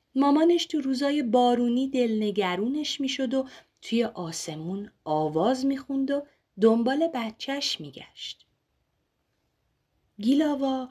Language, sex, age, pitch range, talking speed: Persian, female, 30-49, 205-310 Hz, 90 wpm